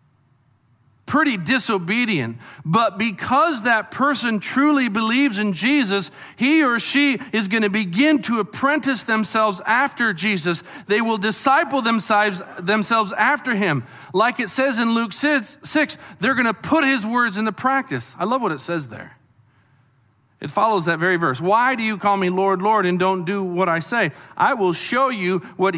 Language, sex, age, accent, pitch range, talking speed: English, male, 40-59, American, 135-220 Hz, 170 wpm